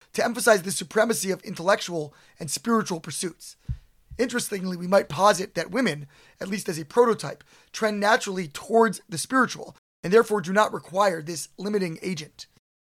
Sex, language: male, English